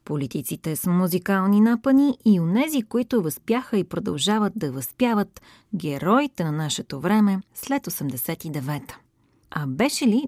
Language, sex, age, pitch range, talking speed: Bulgarian, female, 30-49, 155-215 Hz, 125 wpm